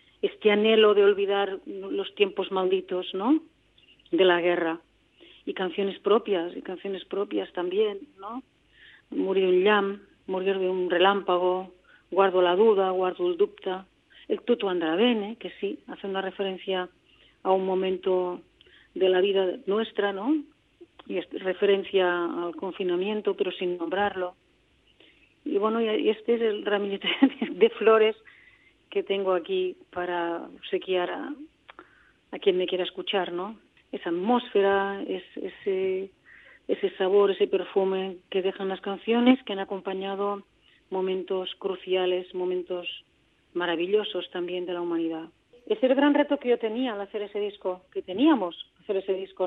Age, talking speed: 40-59, 140 wpm